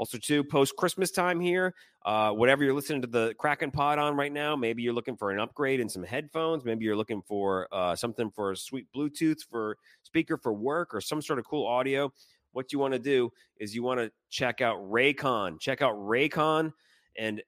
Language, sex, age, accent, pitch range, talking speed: English, male, 30-49, American, 105-130 Hz, 210 wpm